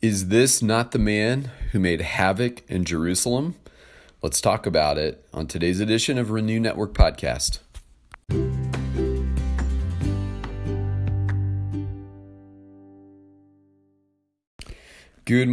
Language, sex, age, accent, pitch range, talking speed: English, male, 40-59, American, 80-105 Hz, 85 wpm